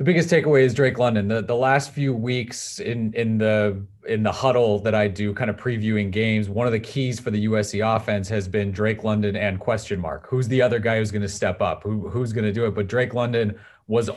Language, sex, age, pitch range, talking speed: English, male, 30-49, 100-120 Hz, 235 wpm